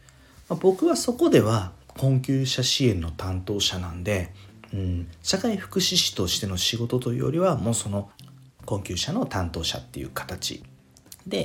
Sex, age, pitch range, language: male, 40-59, 95-130 Hz, Japanese